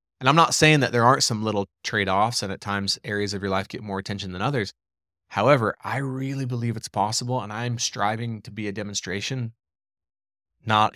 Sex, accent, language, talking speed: male, American, English, 195 wpm